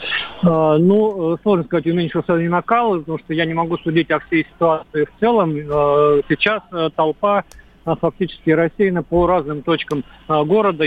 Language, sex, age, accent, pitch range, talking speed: Russian, male, 40-59, native, 155-175 Hz, 140 wpm